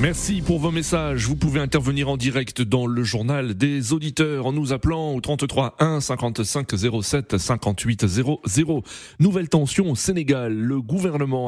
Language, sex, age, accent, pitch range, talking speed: French, male, 30-49, French, 110-145 Hz, 155 wpm